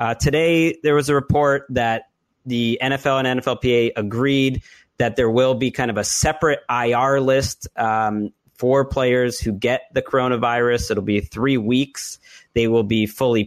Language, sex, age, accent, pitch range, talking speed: English, male, 30-49, American, 115-135 Hz, 165 wpm